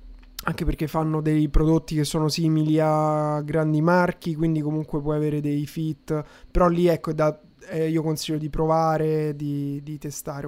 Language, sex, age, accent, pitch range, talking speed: Italian, male, 20-39, native, 150-185 Hz, 165 wpm